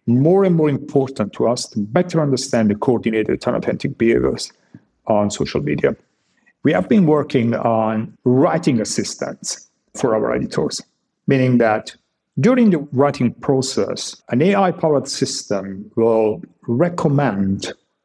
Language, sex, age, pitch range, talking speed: English, male, 50-69, 110-155 Hz, 125 wpm